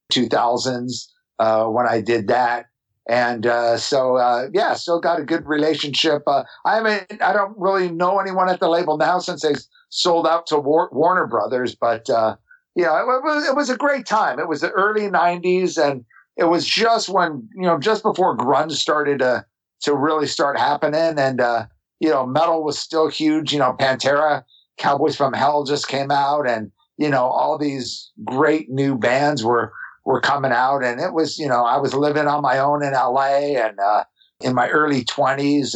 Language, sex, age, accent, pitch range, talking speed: English, male, 50-69, American, 120-160 Hz, 190 wpm